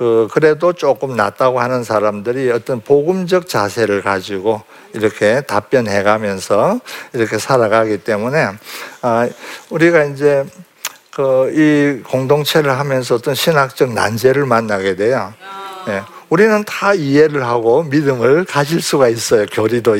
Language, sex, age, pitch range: Korean, male, 50-69, 115-165 Hz